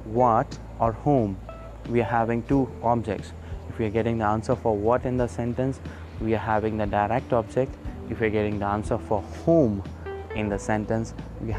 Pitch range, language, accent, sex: 95-125 Hz, English, Indian, male